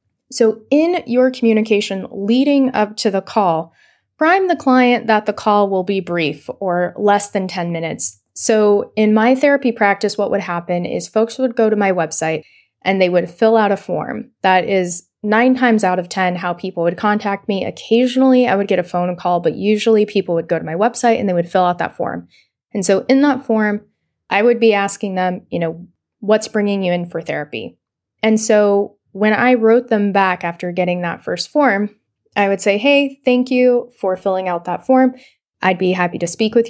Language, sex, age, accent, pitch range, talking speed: English, female, 20-39, American, 180-230 Hz, 205 wpm